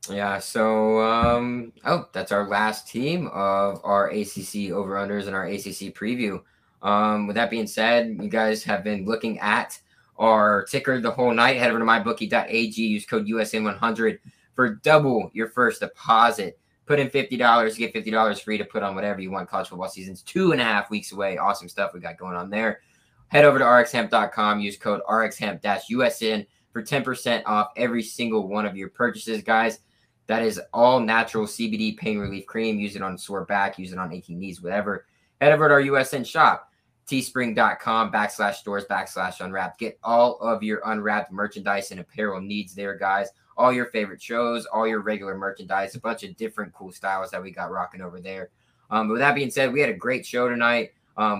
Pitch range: 100-120 Hz